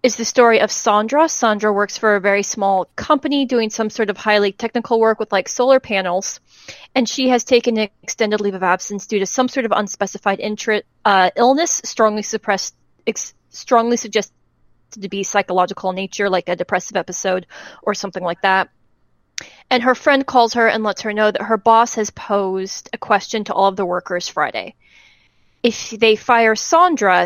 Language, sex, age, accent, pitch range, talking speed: English, female, 30-49, American, 195-230 Hz, 185 wpm